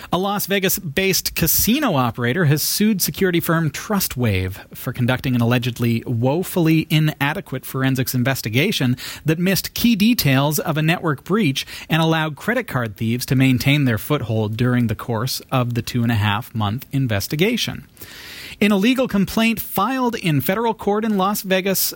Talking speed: 145 wpm